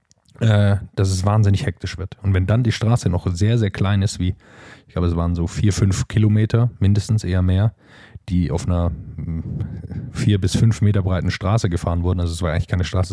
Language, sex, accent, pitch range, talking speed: German, male, German, 90-105 Hz, 200 wpm